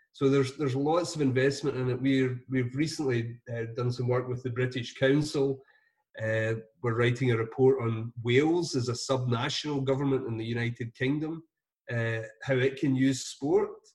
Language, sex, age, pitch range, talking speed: English, male, 30-49, 115-135 Hz, 170 wpm